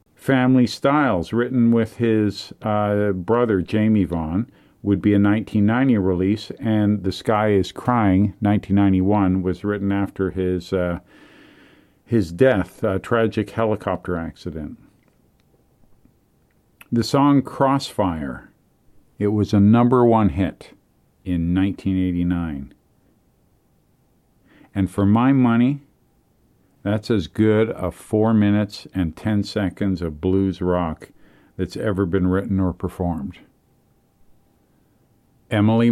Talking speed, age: 110 wpm, 50-69